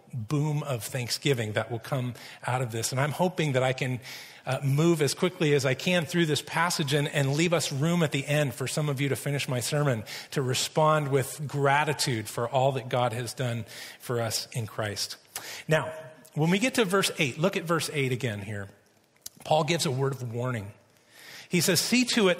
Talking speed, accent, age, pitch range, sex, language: 210 wpm, American, 40-59, 125-155 Hz, male, English